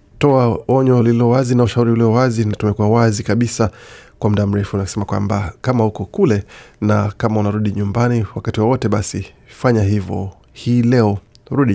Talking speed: 165 wpm